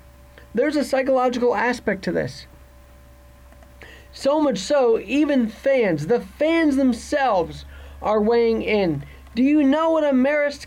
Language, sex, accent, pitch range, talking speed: English, male, American, 185-275 Hz, 130 wpm